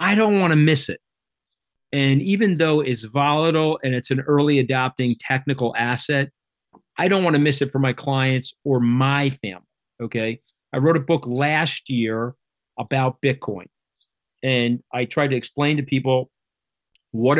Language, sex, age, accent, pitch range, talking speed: English, male, 40-59, American, 120-145 Hz, 160 wpm